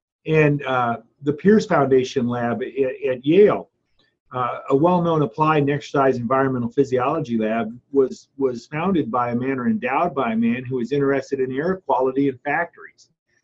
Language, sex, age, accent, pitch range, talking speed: English, male, 40-59, American, 135-180 Hz, 165 wpm